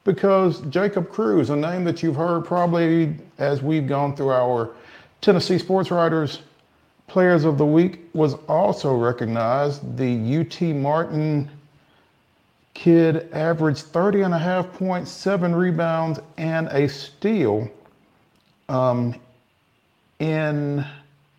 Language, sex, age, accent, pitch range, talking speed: English, male, 50-69, American, 130-175 Hz, 105 wpm